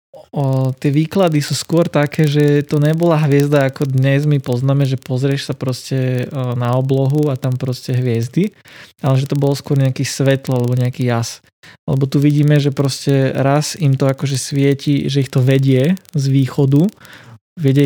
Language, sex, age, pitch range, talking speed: Slovak, male, 20-39, 130-150 Hz, 170 wpm